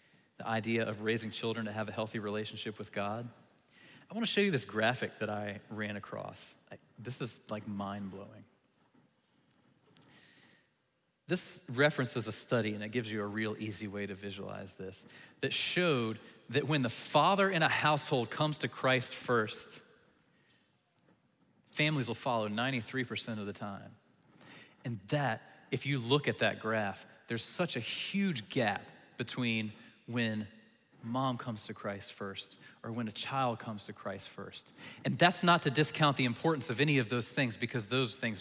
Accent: American